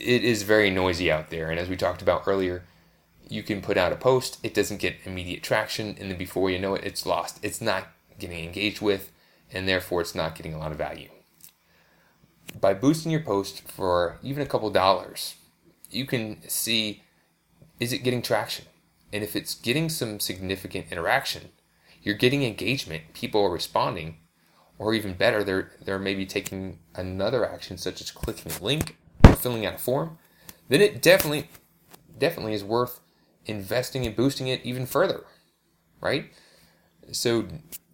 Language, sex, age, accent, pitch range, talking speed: English, male, 20-39, American, 90-125 Hz, 170 wpm